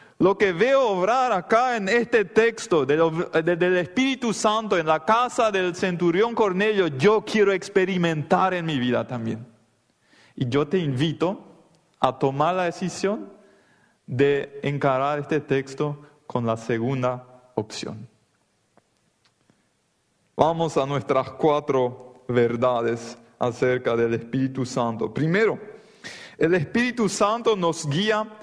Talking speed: 115 wpm